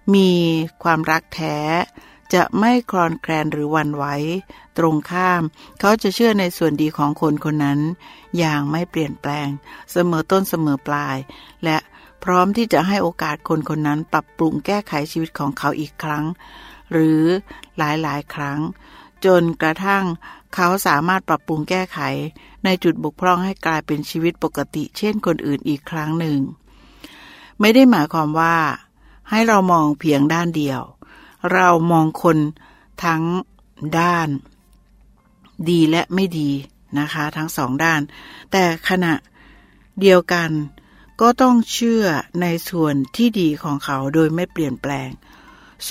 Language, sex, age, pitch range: Thai, female, 60-79, 150-185 Hz